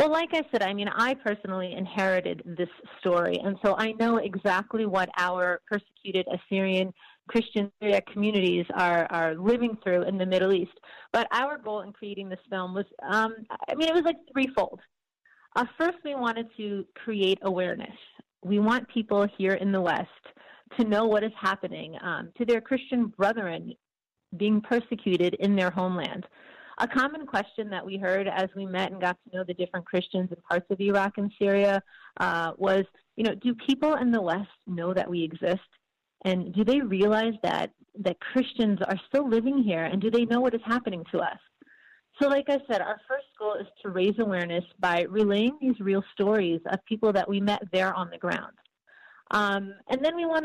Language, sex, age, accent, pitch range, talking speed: English, female, 30-49, American, 185-230 Hz, 190 wpm